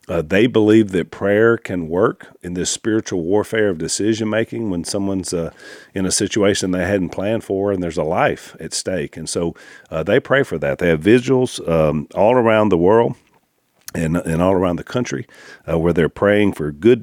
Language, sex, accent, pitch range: English, male, American, 85-105 Hz